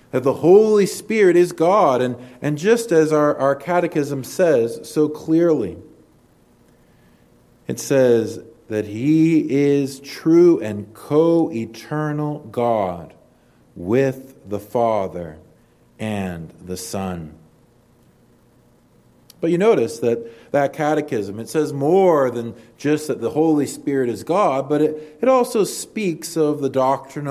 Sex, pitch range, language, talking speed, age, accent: male, 115-160 Hz, English, 125 wpm, 40-59, American